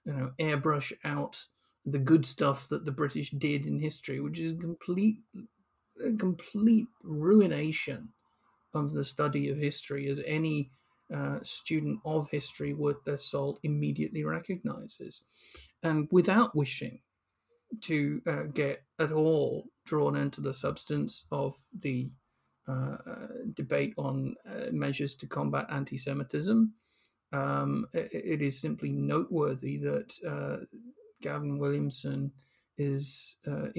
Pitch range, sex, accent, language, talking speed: 130-155 Hz, male, British, English, 125 wpm